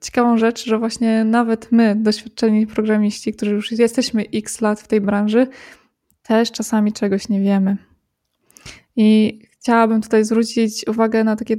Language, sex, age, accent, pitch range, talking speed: Polish, female, 20-39, native, 225-250 Hz, 145 wpm